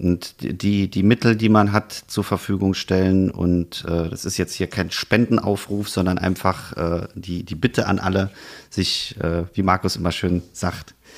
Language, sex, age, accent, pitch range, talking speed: German, male, 40-59, German, 90-100 Hz, 175 wpm